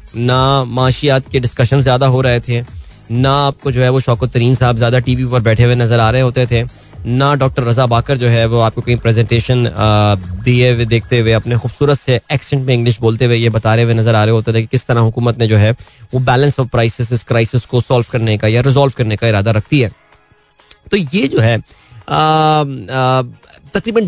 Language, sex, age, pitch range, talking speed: Hindi, male, 20-39, 115-150 Hz, 185 wpm